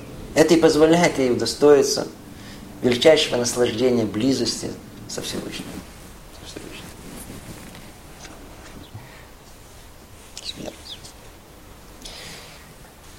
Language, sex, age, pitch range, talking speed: Russian, male, 50-69, 130-175 Hz, 50 wpm